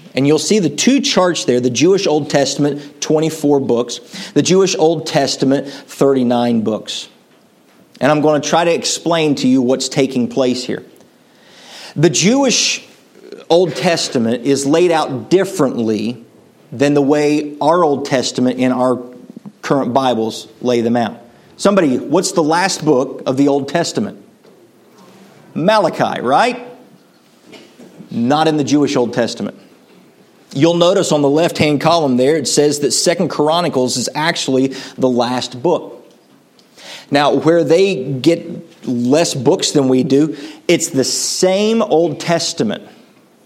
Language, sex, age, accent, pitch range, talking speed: English, male, 50-69, American, 130-170 Hz, 140 wpm